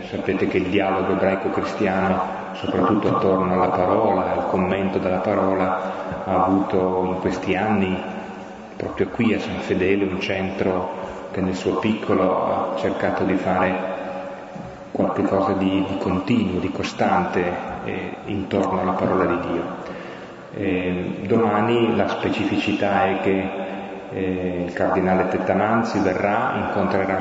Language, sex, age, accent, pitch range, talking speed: Italian, male, 30-49, native, 95-100 Hz, 125 wpm